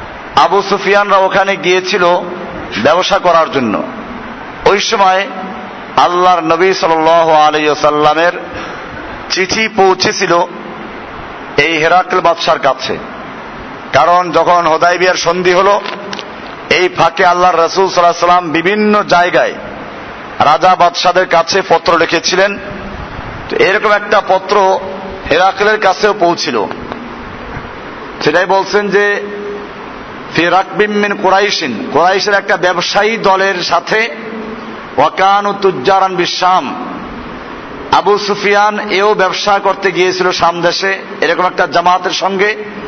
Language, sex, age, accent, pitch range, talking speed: Bengali, male, 50-69, native, 175-200 Hz, 70 wpm